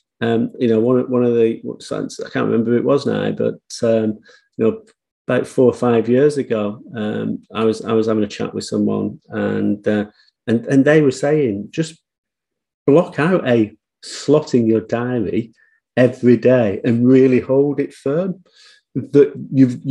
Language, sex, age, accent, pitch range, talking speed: English, male, 40-59, British, 110-140 Hz, 175 wpm